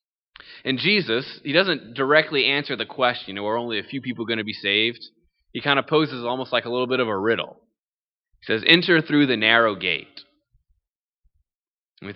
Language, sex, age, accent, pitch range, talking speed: English, male, 20-39, American, 110-130 Hz, 185 wpm